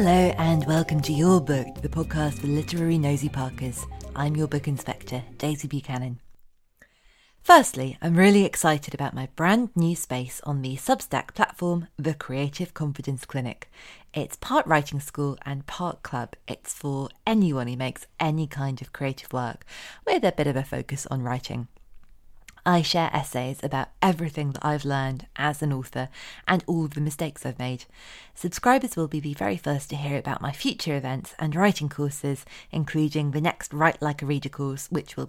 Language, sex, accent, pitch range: English, female, British, 135-165 Hz